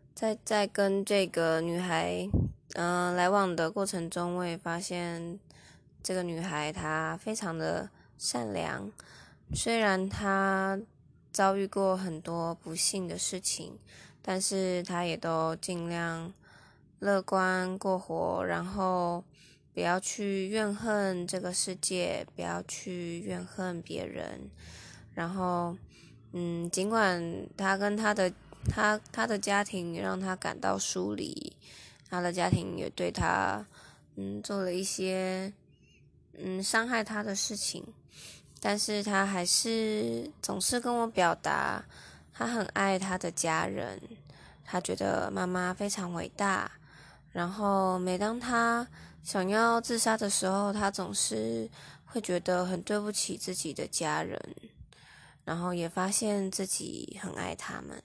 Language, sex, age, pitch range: Chinese, female, 20-39, 165-195 Hz